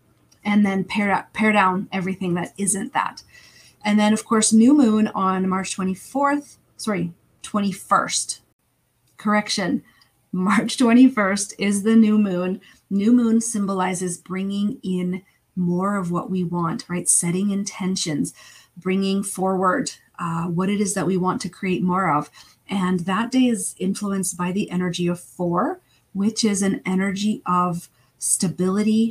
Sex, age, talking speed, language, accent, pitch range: female, 30-49, 140 wpm, English, American, 180-210 Hz